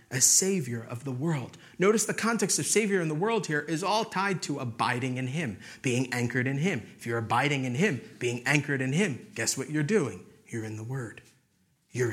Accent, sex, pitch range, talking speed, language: American, male, 130-195 Hz, 215 wpm, English